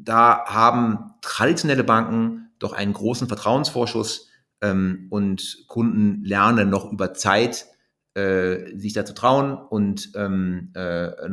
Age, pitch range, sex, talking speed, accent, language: 30-49, 100-125 Hz, male, 115 wpm, German, English